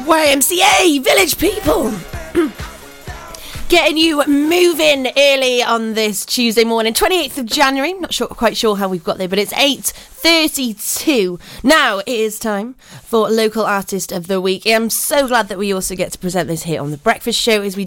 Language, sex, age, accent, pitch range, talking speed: English, female, 30-49, British, 195-265 Hz, 175 wpm